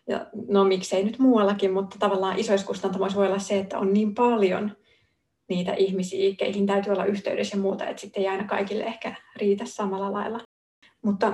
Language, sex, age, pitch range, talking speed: Finnish, female, 30-49, 195-220 Hz, 170 wpm